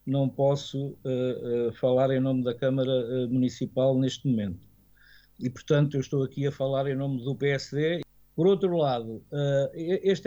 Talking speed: 145 wpm